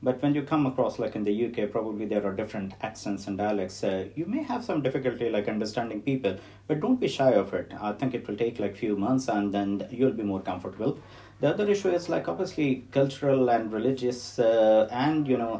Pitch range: 105-140 Hz